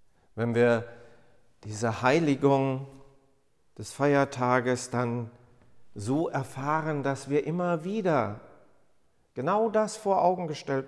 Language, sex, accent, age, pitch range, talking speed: German, male, German, 50-69, 110-150 Hz, 100 wpm